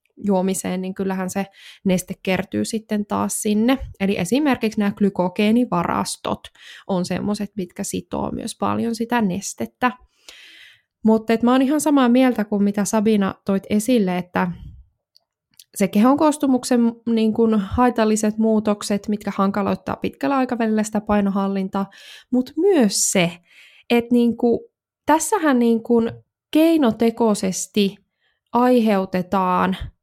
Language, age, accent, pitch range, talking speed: Finnish, 20-39, native, 190-235 Hz, 110 wpm